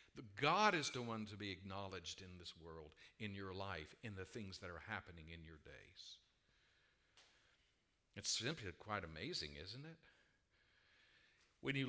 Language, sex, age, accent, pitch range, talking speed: English, male, 60-79, American, 90-125 Hz, 150 wpm